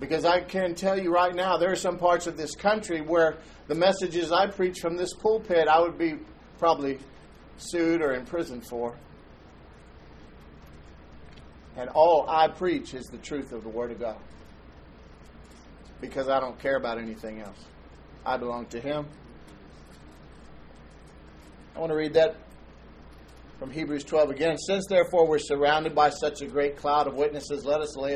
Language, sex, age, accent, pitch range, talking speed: English, male, 50-69, American, 120-165 Hz, 160 wpm